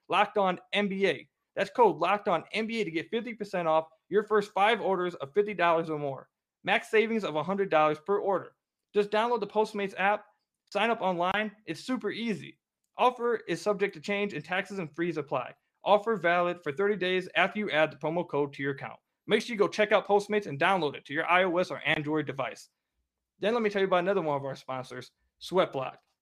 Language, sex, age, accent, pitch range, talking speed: English, male, 20-39, American, 160-210 Hz, 205 wpm